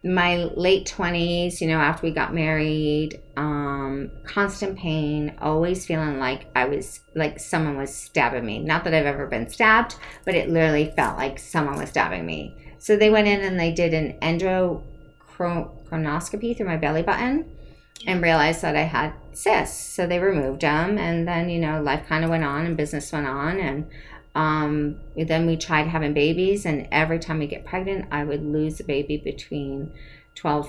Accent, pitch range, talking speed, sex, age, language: American, 145-170 Hz, 180 wpm, female, 40-59, English